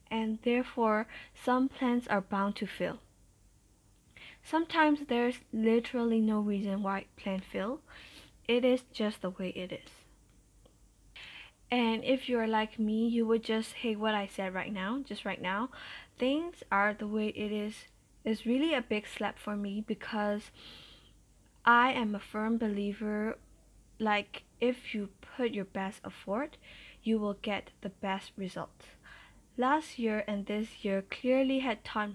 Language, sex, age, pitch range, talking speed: English, female, 20-39, 205-240 Hz, 150 wpm